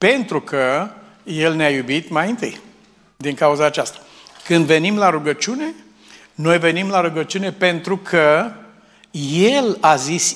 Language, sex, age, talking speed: Romanian, male, 60-79, 135 wpm